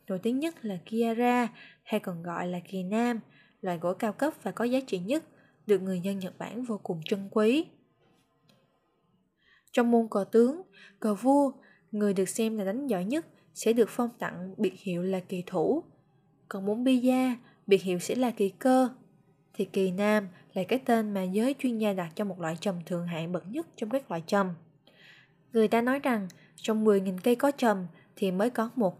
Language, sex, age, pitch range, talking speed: Vietnamese, female, 20-39, 185-240 Hz, 200 wpm